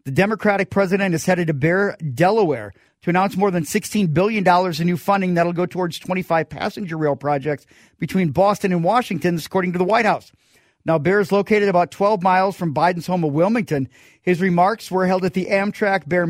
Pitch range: 165-195 Hz